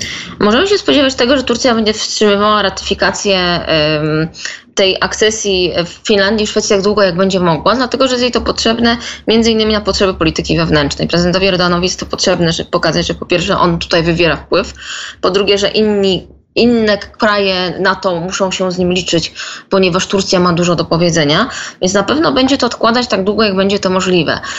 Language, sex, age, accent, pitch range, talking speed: Polish, female, 20-39, native, 180-220 Hz, 190 wpm